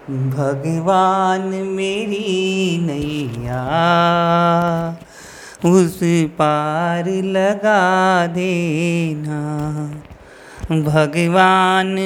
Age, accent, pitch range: 30-49, native, 170-220 Hz